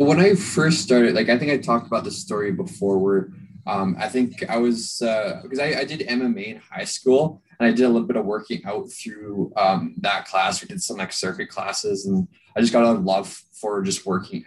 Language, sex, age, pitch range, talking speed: English, male, 20-39, 115-170 Hz, 230 wpm